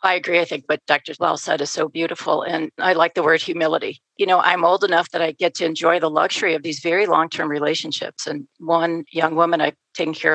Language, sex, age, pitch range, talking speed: English, female, 50-69, 155-185 Hz, 240 wpm